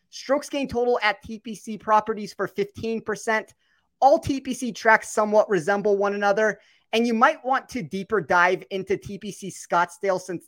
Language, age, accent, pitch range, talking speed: English, 30-49, American, 185-225 Hz, 150 wpm